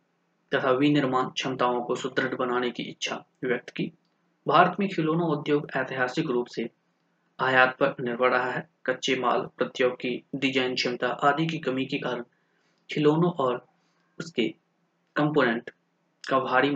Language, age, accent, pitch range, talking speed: Hindi, 20-39, native, 130-170 Hz, 135 wpm